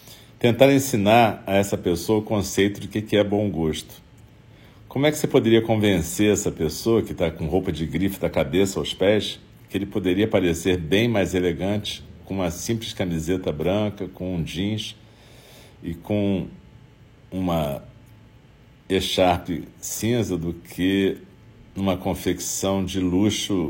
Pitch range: 90-110 Hz